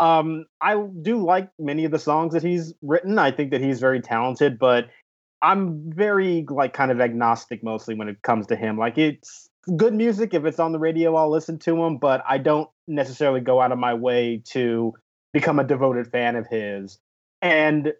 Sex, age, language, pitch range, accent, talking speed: male, 30-49, English, 125-170 Hz, American, 195 wpm